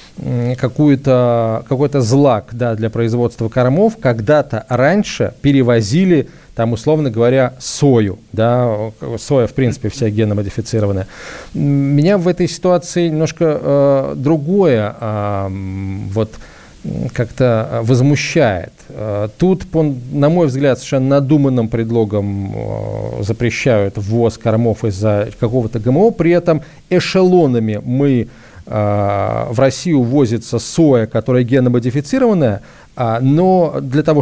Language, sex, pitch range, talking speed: Russian, male, 115-150 Hz, 105 wpm